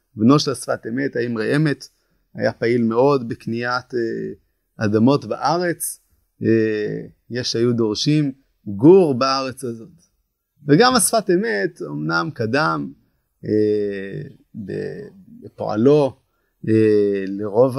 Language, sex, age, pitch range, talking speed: Hebrew, male, 30-49, 115-175 Hz, 90 wpm